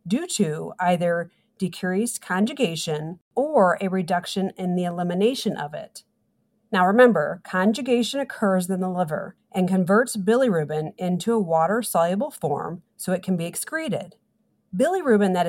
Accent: American